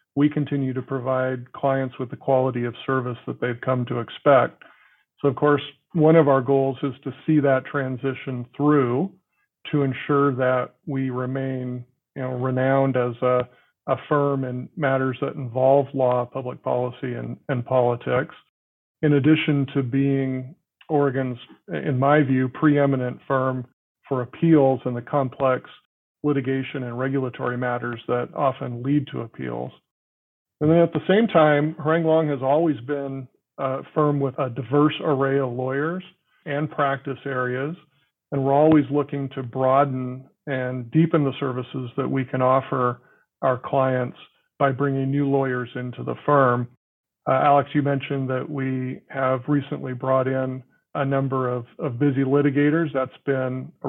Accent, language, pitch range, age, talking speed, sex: American, English, 130-145 Hz, 40-59, 155 wpm, male